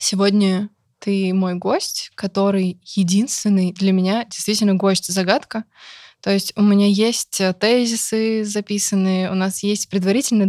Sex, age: female, 20-39